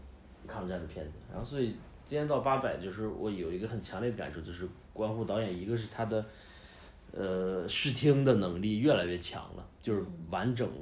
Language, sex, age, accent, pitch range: Chinese, male, 30-49, native, 85-110 Hz